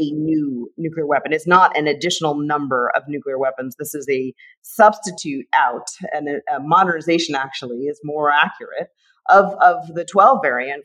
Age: 40-59